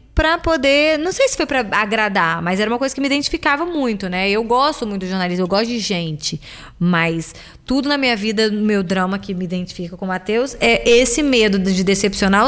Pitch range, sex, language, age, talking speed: 185-240 Hz, female, Portuguese, 20-39, 215 wpm